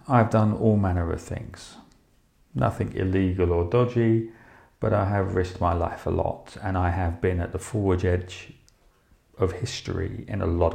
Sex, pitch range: male, 90-110 Hz